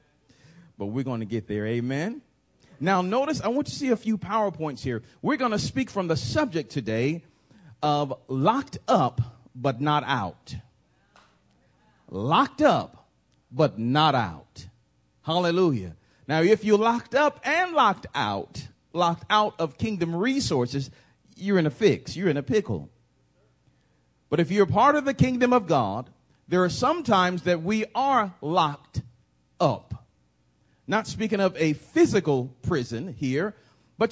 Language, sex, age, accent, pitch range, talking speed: English, male, 40-59, American, 130-215 Hz, 150 wpm